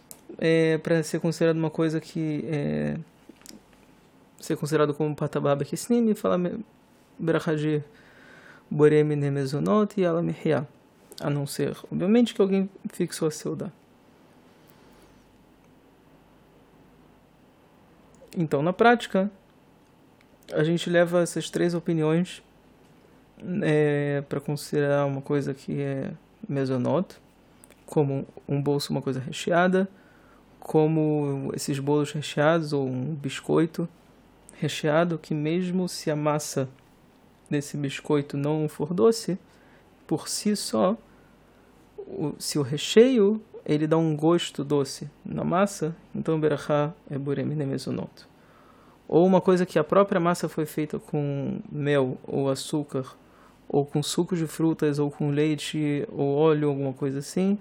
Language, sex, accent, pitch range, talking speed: Portuguese, male, Brazilian, 145-175 Hz, 115 wpm